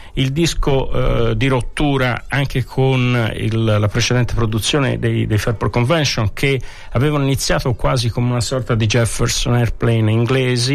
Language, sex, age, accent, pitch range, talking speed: Italian, male, 40-59, native, 105-130 Hz, 145 wpm